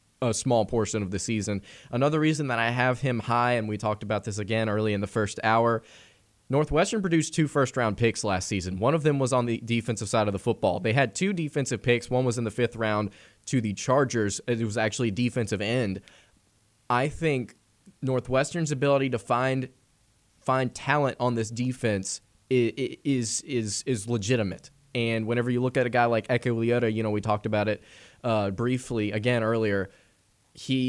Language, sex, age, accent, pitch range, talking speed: English, male, 20-39, American, 105-125 Hz, 190 wpm